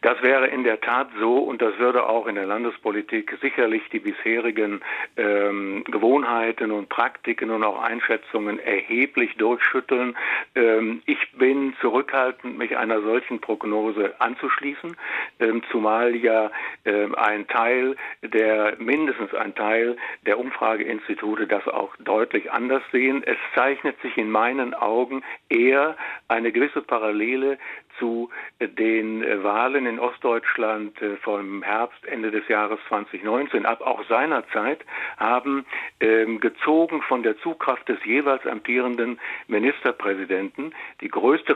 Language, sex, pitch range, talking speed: German, male, 110-140 Hz, 125 wpm